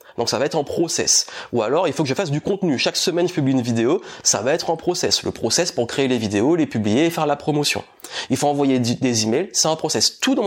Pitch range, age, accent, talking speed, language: 125-165 Hz, 30-49, French, 275 wpm, French